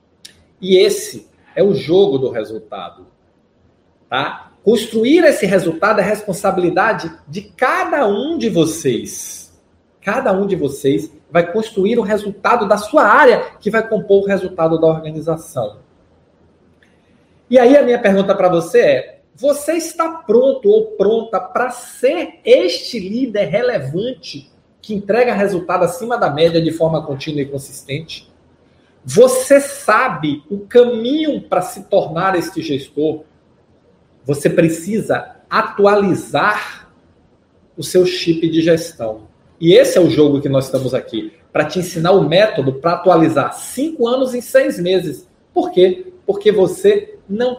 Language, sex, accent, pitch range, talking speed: Portuguese, male, Brazilian, 165-245 Hz, 135 wpm